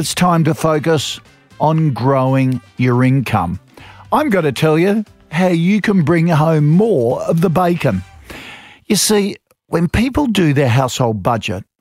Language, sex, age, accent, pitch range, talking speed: English, male, 50-69, Australian, 125-175 Hz, 145 wpm